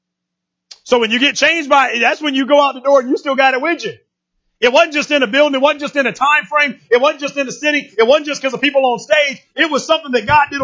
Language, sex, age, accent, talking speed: English, male, 40-59, American, 305 wpm